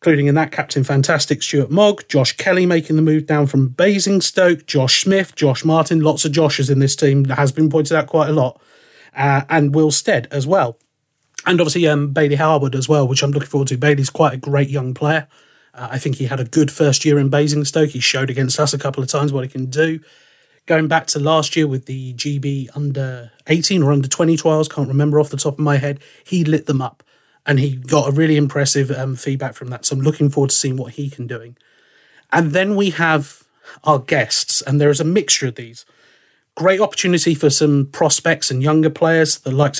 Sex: male